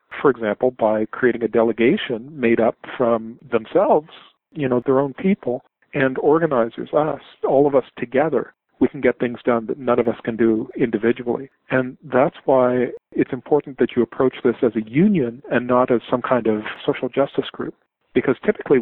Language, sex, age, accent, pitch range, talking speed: English, male, 50-69, American, 115-135 Hz, 180 wpm